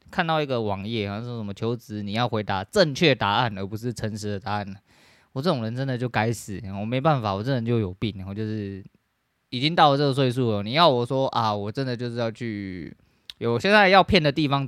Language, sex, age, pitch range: Chinese, male, 20-39, 105-125 Hz